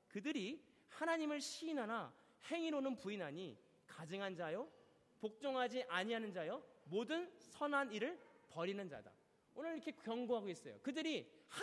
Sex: male